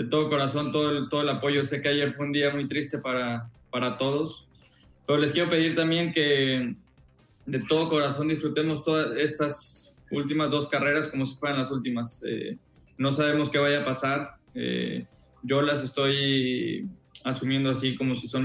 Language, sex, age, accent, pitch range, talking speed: Spanish, male, 20-39, Mexican, 125-140 Hz, 175 wpm